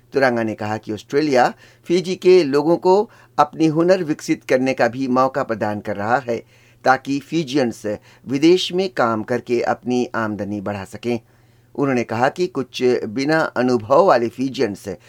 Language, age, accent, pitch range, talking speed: Hindi, 60-79, native, 115-150 Hz, 150 wpm